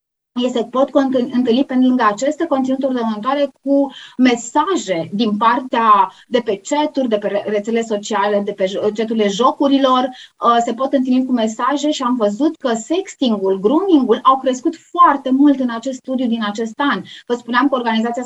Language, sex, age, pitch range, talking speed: Romanian, female, 20-39, 220-270 Hz, 160 wpm